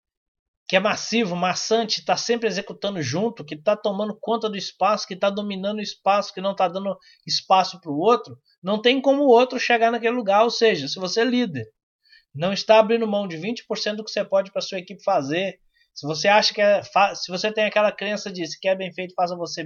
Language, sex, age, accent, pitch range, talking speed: Portuguese, male, 20-39, Brazilian, 150-215 Hz, 210 wpm